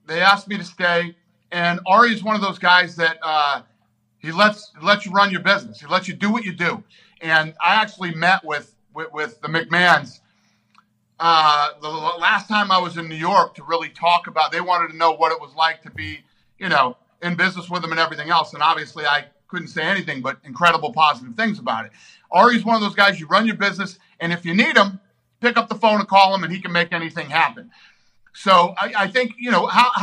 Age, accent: 50-69, American